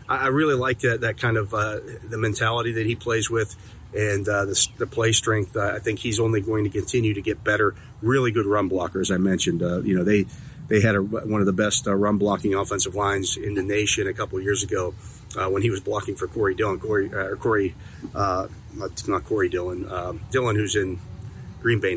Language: English